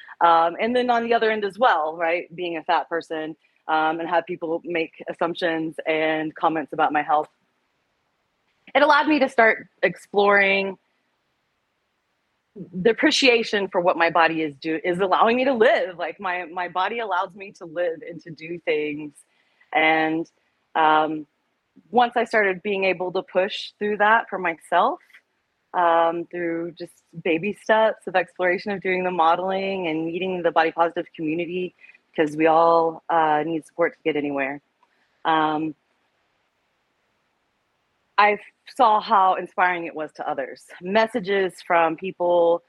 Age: 30-49